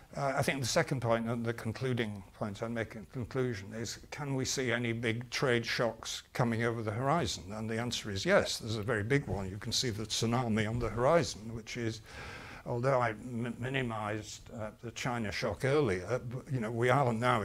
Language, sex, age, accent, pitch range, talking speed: English, male, 60-79, British, 110-125 Hz, 205 wpm